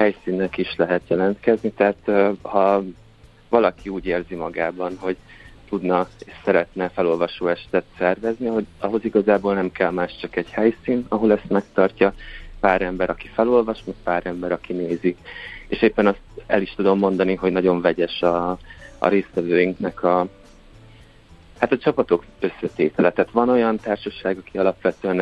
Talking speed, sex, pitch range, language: 150 wpm, male, 90-105 Hz, Hungarian